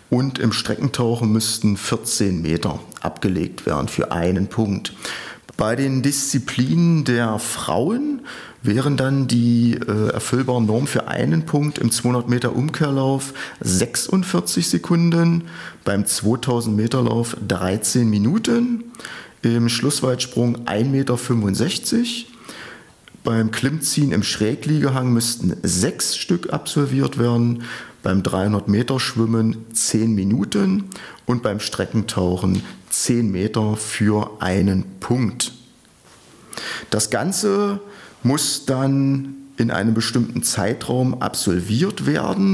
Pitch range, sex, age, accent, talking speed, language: 110-145 Hz, male, 40-59, German, 105 wpm, German